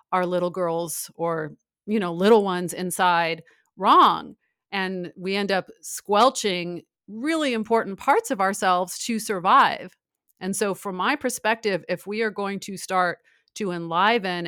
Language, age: English, 40-59